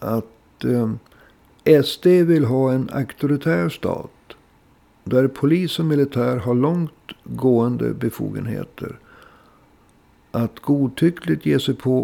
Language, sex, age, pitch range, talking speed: Swedish, male, 60-79, 115-150 Hz, 100 wpm